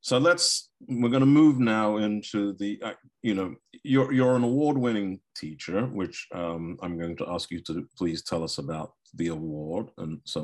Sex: male